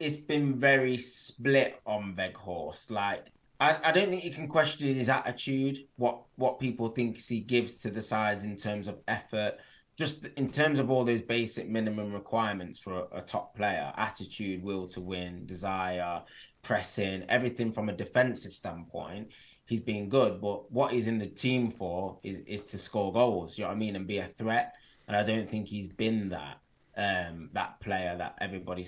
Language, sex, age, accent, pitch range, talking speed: English, male, 20-39, British, 100-130 Hz, 190 wpm